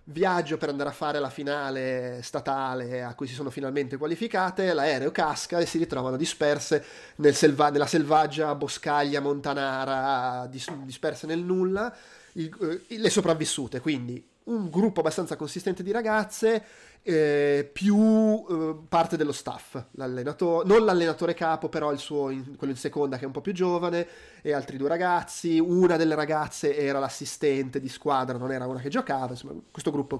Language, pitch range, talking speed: Italian, 135-165 Hz, 155 wpm